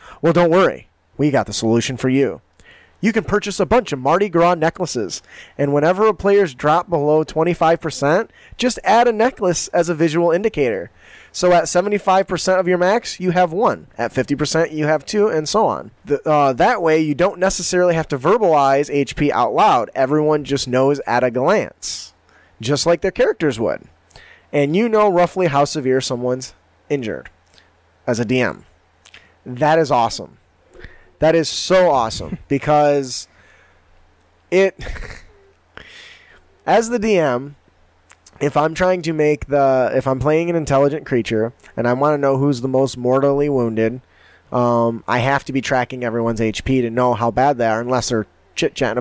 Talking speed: 165 wpm